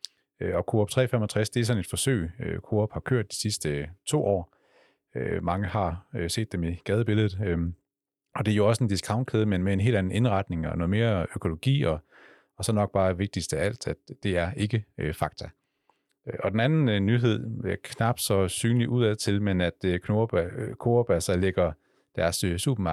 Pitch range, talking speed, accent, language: 85-110 Hz, 175 wpm, native, Danish